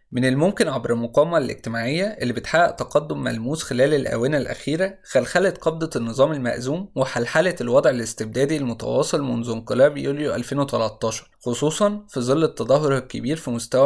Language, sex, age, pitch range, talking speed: Arabic, male, 20-39, 120-160 Hz, 135 wpm